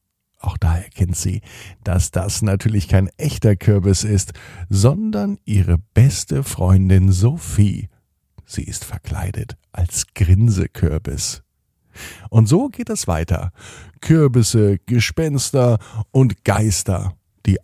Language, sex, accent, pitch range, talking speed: German, male, German, 90-115 Hz, 105 wpm